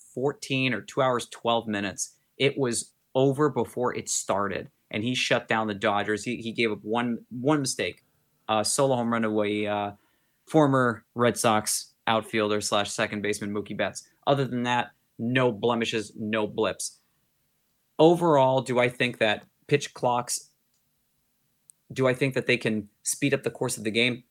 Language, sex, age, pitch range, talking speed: English, male, 30-49, 110-130 Hz, 165 wpm